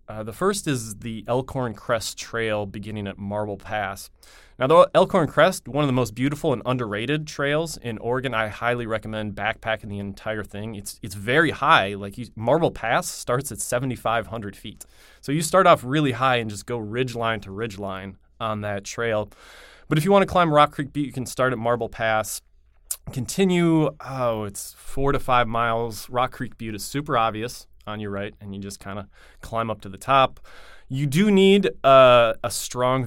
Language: English